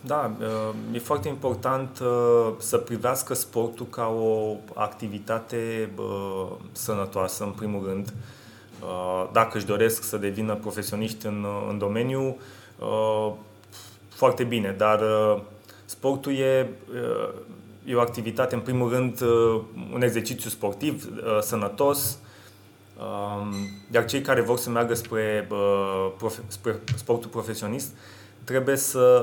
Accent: native